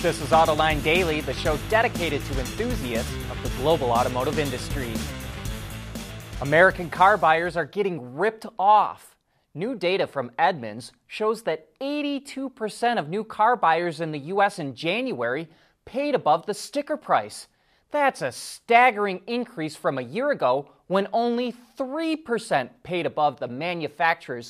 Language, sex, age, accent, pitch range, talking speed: English, male, 30-49, American, 135-205 Hz, 140 wpm